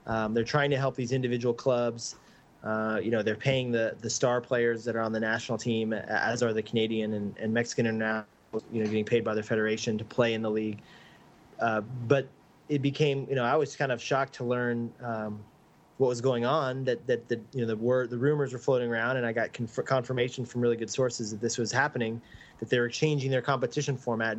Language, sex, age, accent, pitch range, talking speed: English, male, 20-39, American, 115-135 Hz, 230 wpm